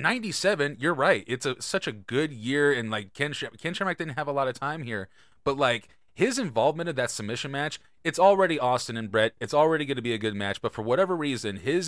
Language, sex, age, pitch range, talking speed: English, male, 30-49, 110-150 Hz, 235 wpm